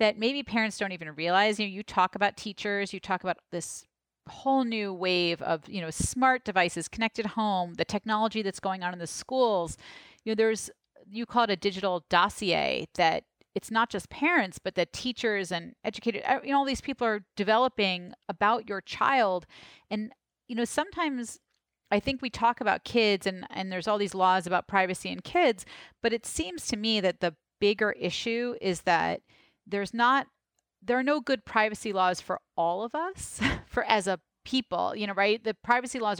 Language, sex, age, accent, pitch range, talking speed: English, female, 30-49, American, 180-230 Hz, 190 wpm